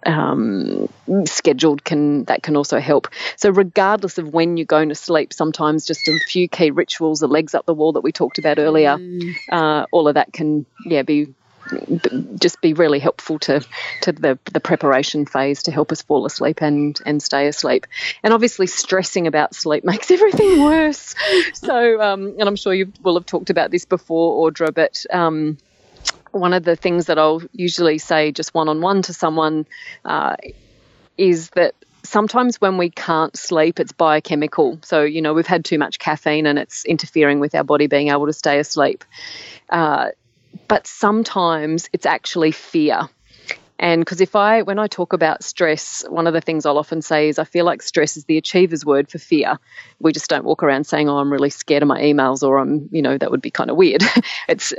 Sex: female